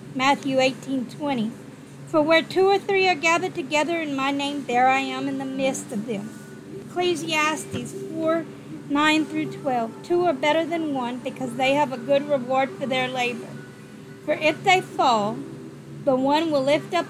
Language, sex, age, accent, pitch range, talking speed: English, female, 40-59, American, 265-315 Hz, 175 wpm